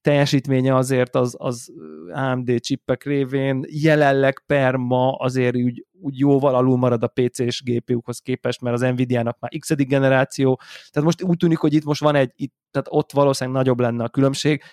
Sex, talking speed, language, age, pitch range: male, 175 wpm, Hungarian, 20-39, 120-135 Hz